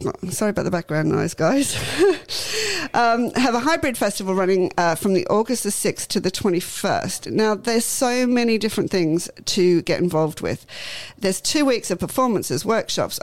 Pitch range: 170-215 Hz